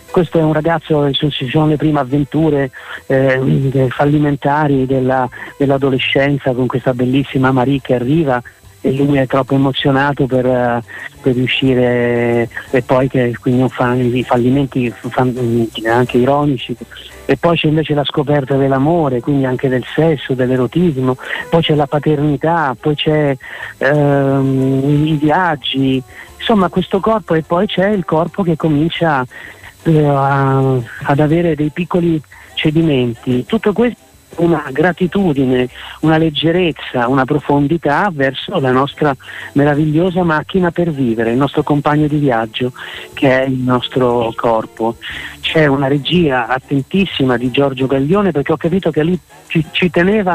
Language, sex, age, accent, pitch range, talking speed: Italian, male, 30-49, native, 130-165 Hz, 135 wpm